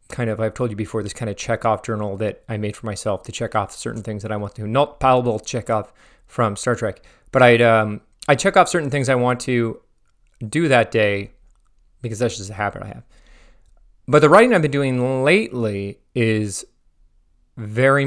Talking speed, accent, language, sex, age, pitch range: 215 wpm, American, English, male, 30-49, 110-125 Hz